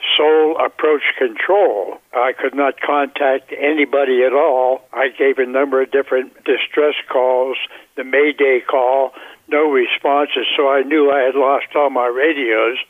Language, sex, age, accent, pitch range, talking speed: English, male, 60-79, American, 135-165 Hz, 150 wpm